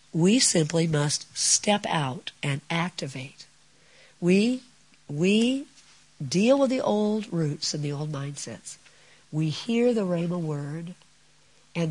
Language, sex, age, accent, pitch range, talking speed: English, female, 50-69, American, 155-195 Hz, 120 wpm